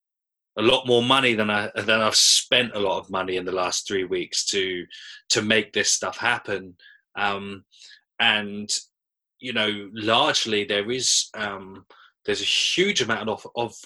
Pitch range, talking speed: 100-130 Hz, 165 wpm